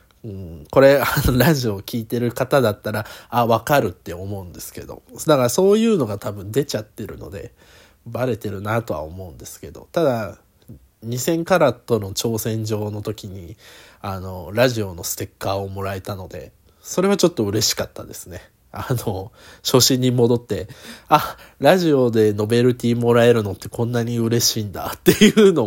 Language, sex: Japanese, male